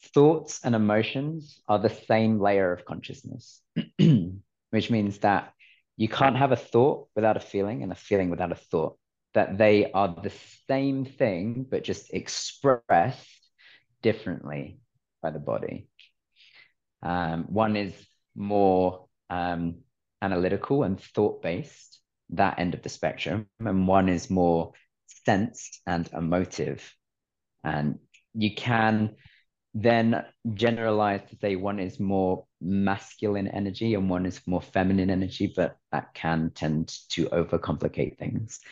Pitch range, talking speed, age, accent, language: 90-110 Hz, 130 wpm, 30-49, British, English